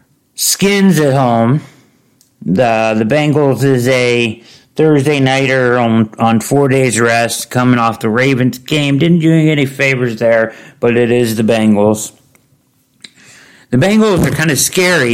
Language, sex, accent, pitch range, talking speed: English, male, American, 110-135 Hz, 145 wpm